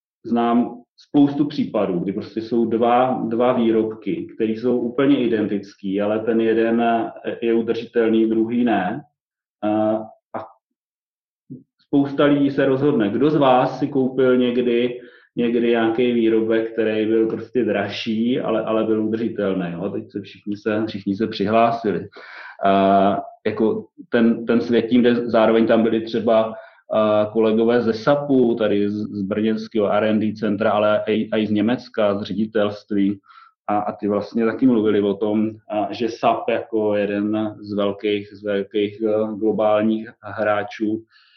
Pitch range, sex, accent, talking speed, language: 105-120 Hz, male, native, 135 wpm, Czech